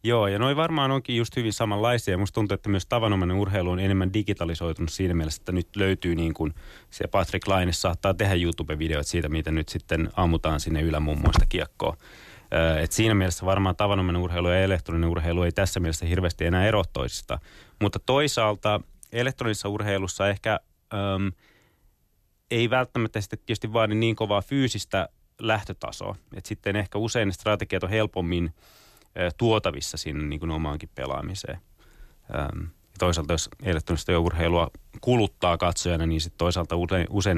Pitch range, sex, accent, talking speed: 85-105 Hz, male, native, 145 wpm